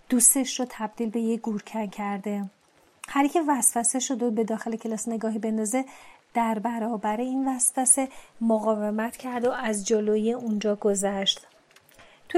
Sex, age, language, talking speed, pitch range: female, 30-49, Persian, 140 wpm, 220-260 Hz